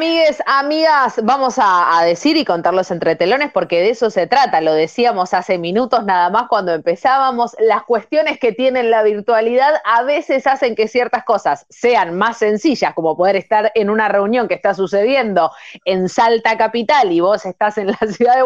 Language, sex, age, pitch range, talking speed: Spanish, female, 20-39, 180-245 Hz, 185 wpm